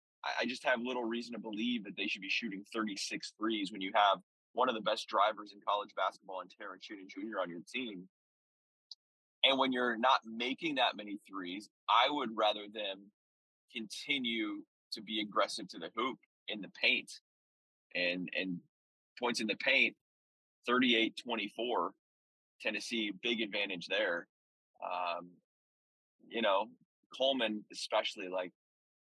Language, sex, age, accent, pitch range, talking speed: English, male, 20-39, American, 90-130 Hz, 145 wpm